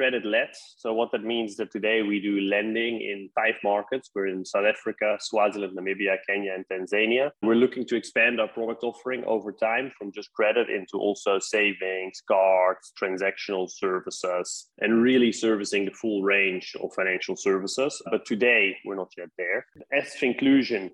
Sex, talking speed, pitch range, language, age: male, 170 wpm, 95-115 Hz, English, 20-39